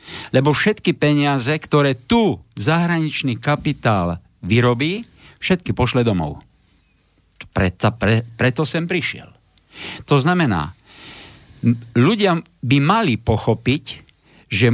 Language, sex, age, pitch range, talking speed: Slovak, male, 50-69, 115-155 Hz, 95 wpm